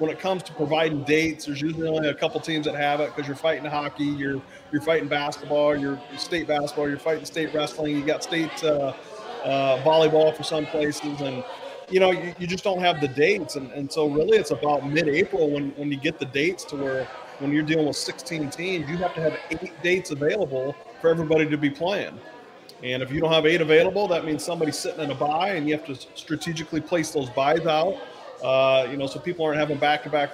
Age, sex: 30-49, male